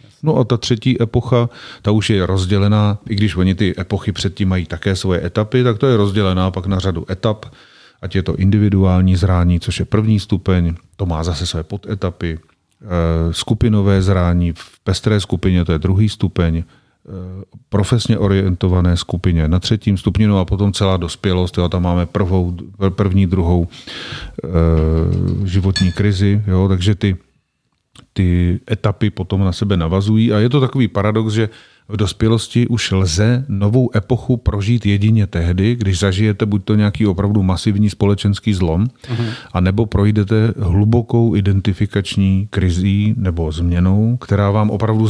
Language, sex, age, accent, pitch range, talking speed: Czech, male, 40-59, native, 95-105 Hz, 150 wpm